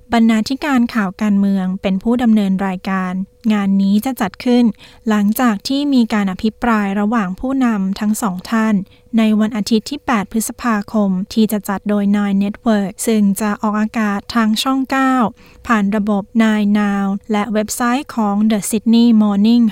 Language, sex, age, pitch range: Thai, female, 20-39, 200-230 Hz